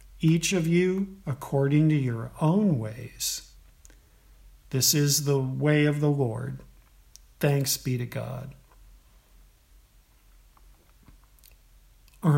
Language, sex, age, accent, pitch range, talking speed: English, male, 50-69, American, 125-170 Hz, 95 wpm